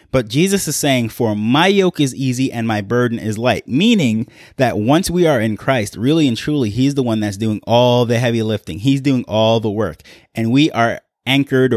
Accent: American